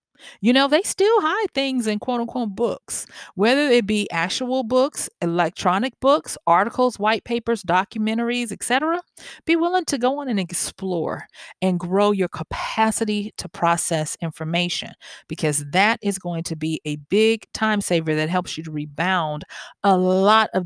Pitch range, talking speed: 170-235 Hz, 155 wpm